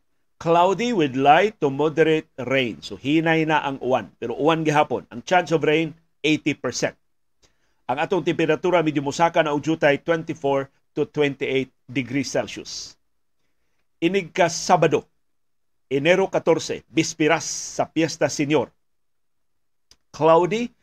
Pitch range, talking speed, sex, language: 135-165 Hz, 120 wpm, male, Filipino